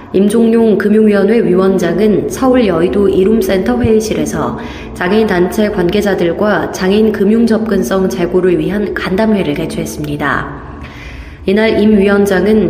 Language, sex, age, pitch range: Korean, female, 20-39, 185-215 Hz